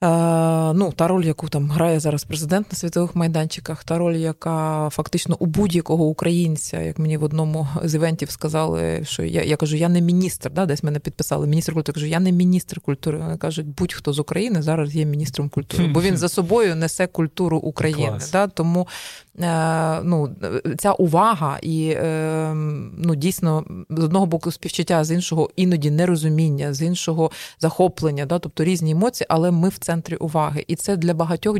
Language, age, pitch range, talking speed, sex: Ukrainian, 20-39, 155-175 Hz, 175 wpm, female